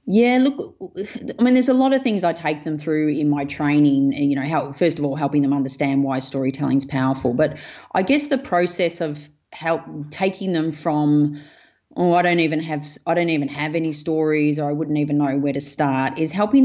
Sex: female